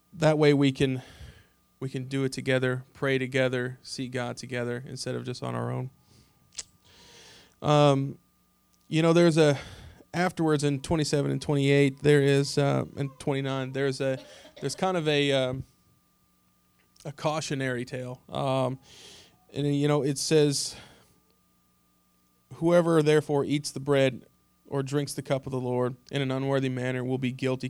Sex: male